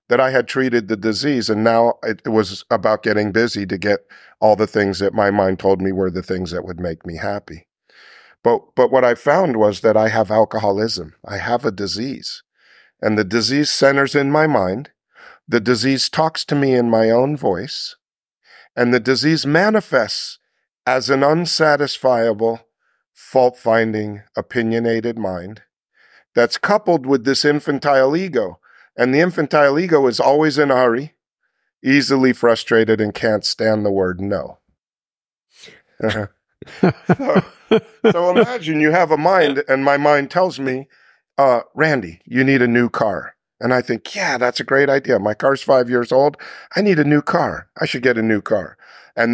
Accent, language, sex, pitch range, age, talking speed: American, English, male, 110-140 Hz, 50-69, 170 wpm